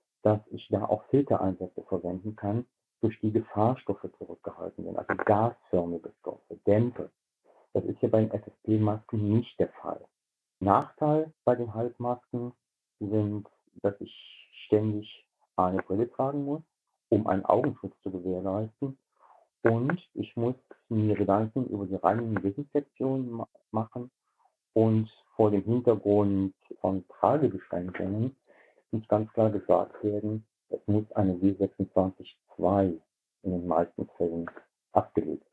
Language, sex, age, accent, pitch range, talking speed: German, male, 50-69, German, 100-120 Hz, 120 wpm